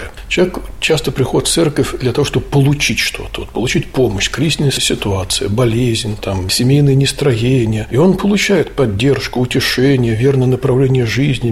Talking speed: 140 wpm